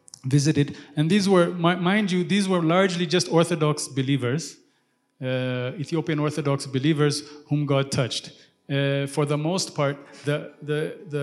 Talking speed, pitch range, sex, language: 145 wpm, 140-165 Hz, male, English